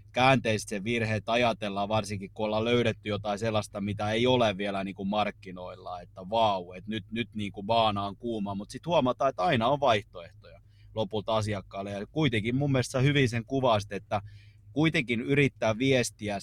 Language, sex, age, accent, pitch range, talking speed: Finnish, male, 30-49, native, 105-120 Hz, 170 wpm